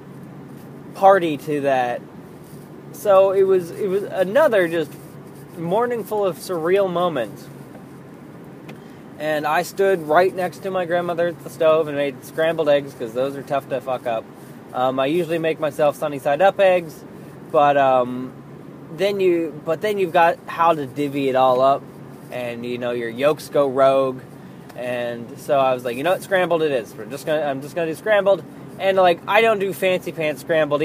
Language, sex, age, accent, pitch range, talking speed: English, male, 20-39, American, 135-180 Hz, 185 wpm